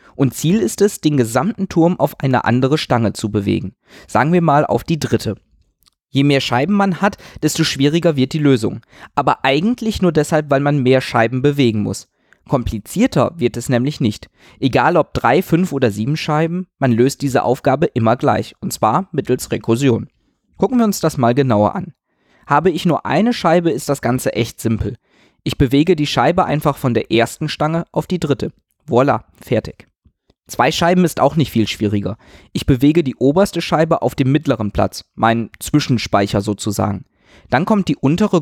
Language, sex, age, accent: German, male, 20-39, German